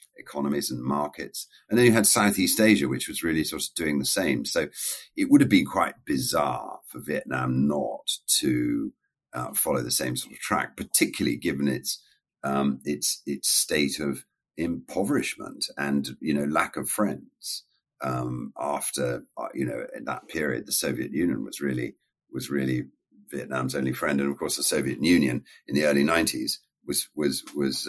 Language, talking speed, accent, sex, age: English, 175 wpm, British, male, 50-69